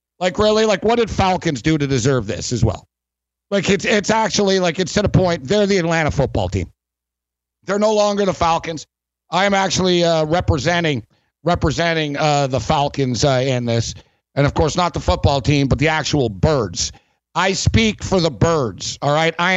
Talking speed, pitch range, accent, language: 190 wpm, 125-205 Hz, American, English